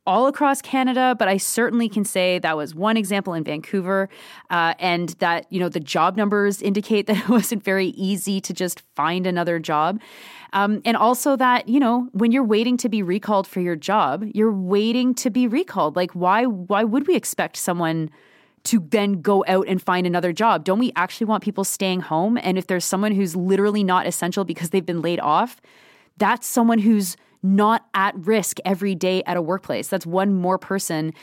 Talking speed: 200 wpm